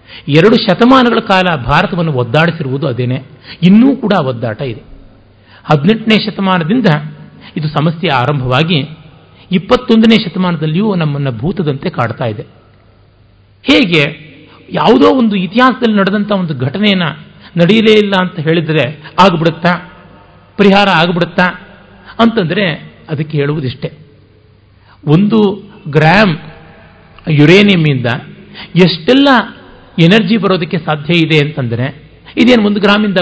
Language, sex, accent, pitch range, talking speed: Kannada, male, native, 140-200 Hz, 90 wpm